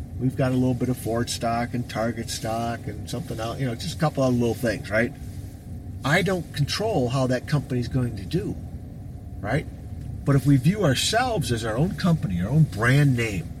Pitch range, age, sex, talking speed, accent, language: 95-125 Hz, 50-69, male, 205 wpm, American, English